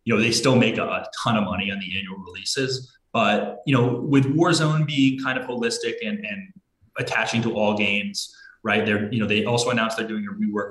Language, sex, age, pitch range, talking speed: English, male, 20-39, 95-130 Hz, 220 wpm